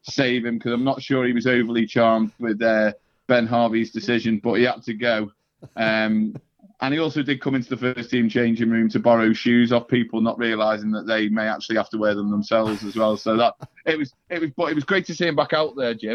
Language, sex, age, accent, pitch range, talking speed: English, male, 30-49, British, 115-145 Hz, 250 wpm